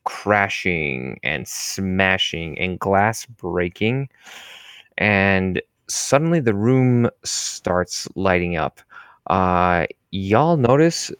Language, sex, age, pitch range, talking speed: English, male, 20-39, 90-110 Hz, 85 wpm